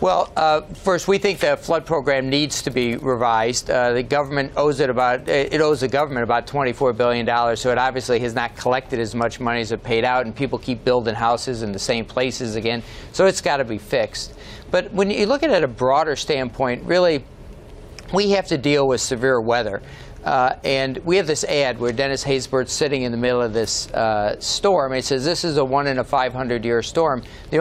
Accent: American